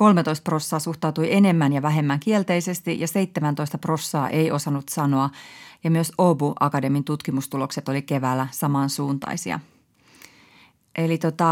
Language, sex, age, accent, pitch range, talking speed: Finnish, female, 30-49, native, 150-185 Hz, 115 wpm